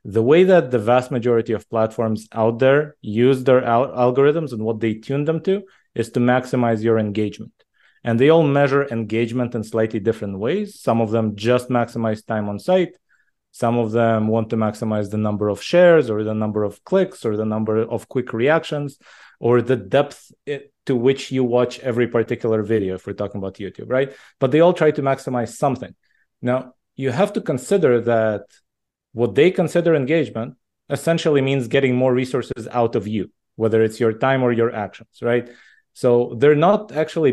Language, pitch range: English, 110-140 Hz